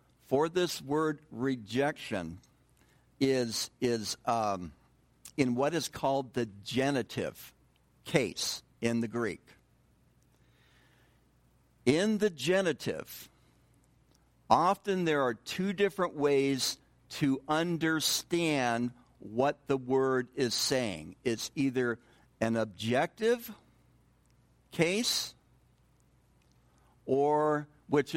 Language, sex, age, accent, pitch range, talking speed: English, male, 60-79, American, 120-155 Hz, 85 wpm